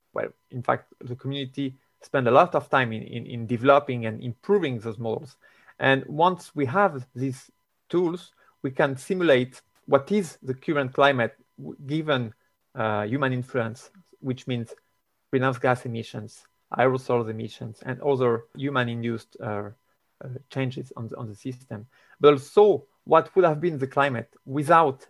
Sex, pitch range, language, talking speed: male, 120-145 Hz, Dutch, 145 wpm